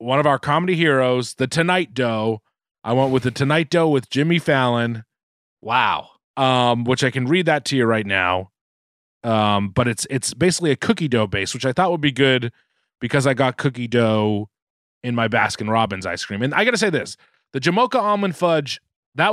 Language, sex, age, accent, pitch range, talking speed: English, male, 30-49, American, 110-155 Hz, 200 wpm